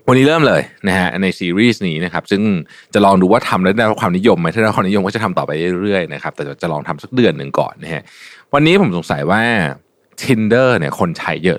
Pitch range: 90-125 Hz